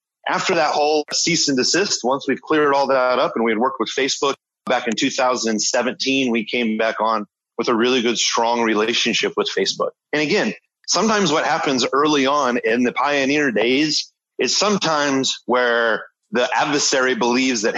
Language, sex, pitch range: English, male, 115-140 Hz